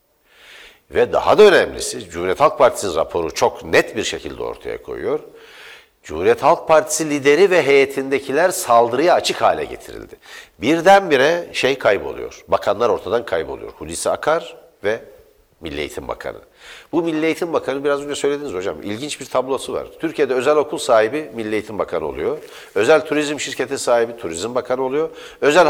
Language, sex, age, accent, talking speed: Turkish, male, 60-79, native, 150 wpm